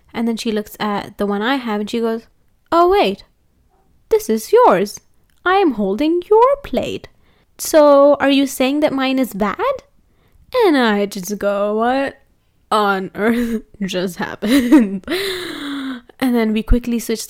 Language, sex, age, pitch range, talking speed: English, female, 20-39, 220-300 Hz, 155 wpm